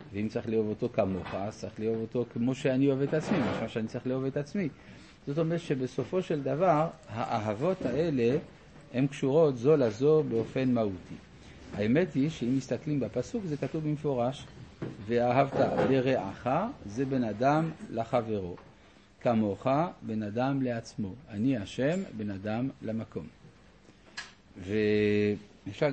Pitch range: 110-145 Hz